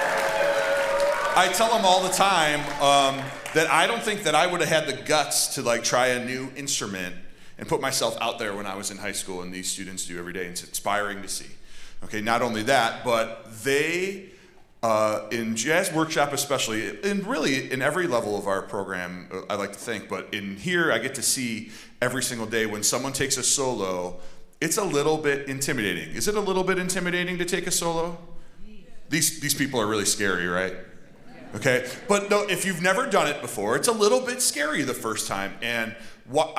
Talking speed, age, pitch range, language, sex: 205 wpm, 30-49, 105-150 Hz, English, male